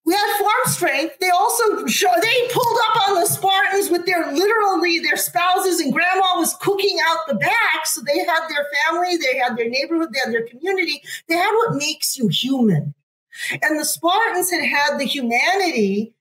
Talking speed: 190 wpm